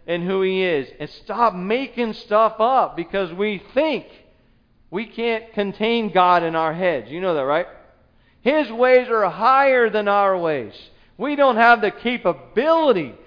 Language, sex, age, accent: English, male, 40-59, American